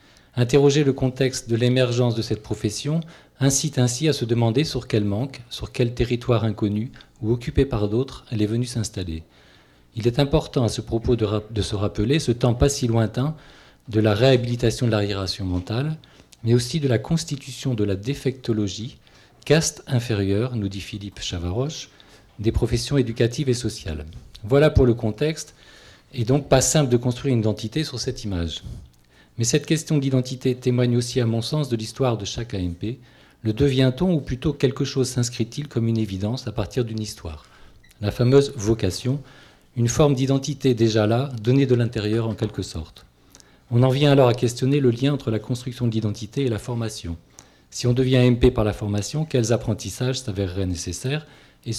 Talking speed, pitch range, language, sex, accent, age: 175 wpm, 110-135 Hz, French, male, French, 40-59